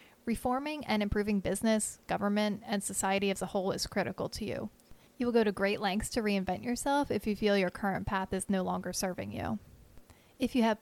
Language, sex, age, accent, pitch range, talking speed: English, female, 30-49, American, 190-220 Hz, 205 wpm